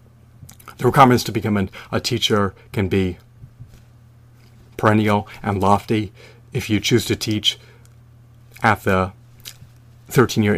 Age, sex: 30-49, male